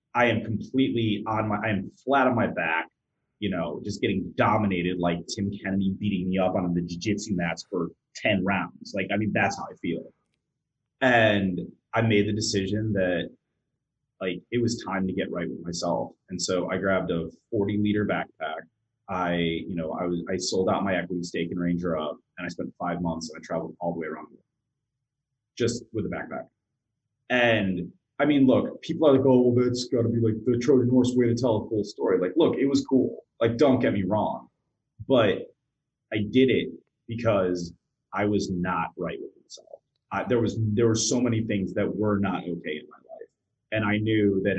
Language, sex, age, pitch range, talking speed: English, male, 30-49, 90-115 Hz, 205 wpm